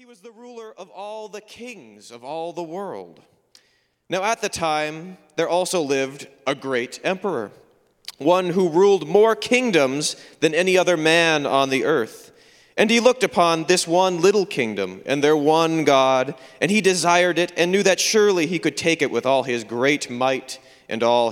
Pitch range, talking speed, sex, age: 135-190 Hz, 185 wpm, male, 30-49